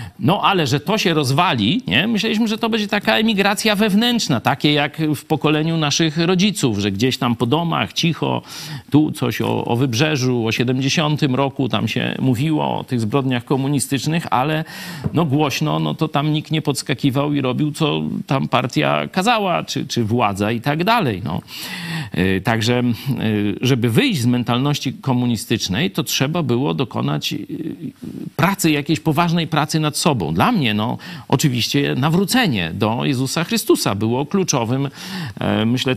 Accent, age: native, 50-69